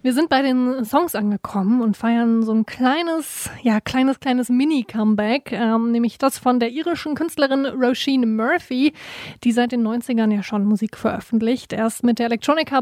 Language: German